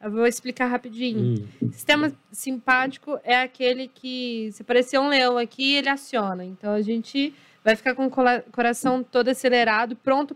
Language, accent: Portuguese, Brazilian